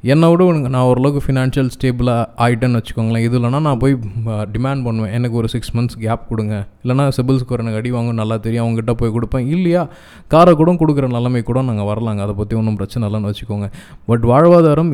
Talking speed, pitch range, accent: 175 wpm, 115-135 Hz, native